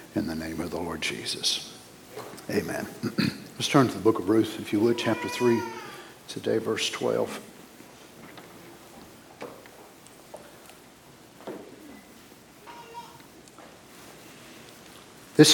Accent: American